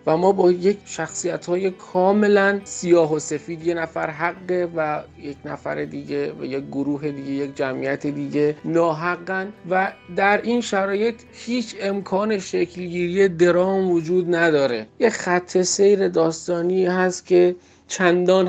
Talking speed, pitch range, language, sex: 135 wpm, 145-180 Hz, Persian, male